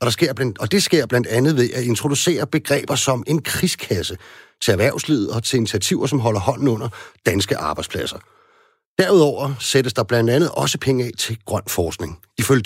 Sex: male